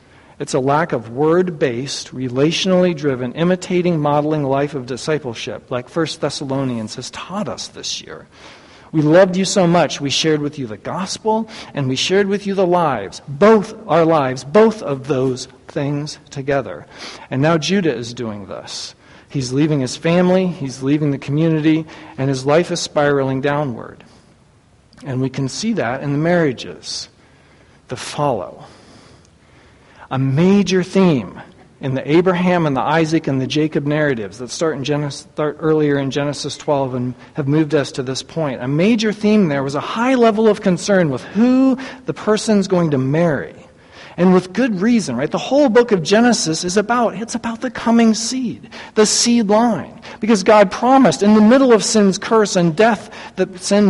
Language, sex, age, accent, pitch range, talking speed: English, male, 60-79, American, 145-215 Hz, 175 wpm